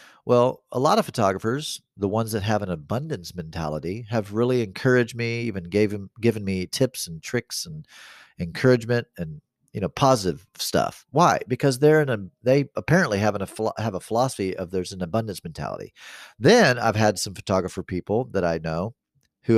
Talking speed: 180 wpm